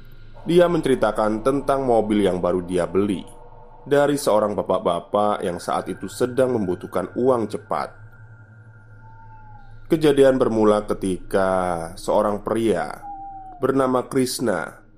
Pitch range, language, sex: 100-130 Hz, Indonesian, male